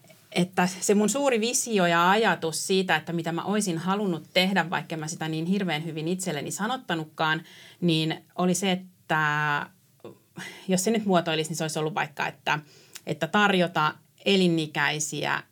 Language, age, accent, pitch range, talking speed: Finnish, 30-49, native, 160-195 Hz, 150 wpm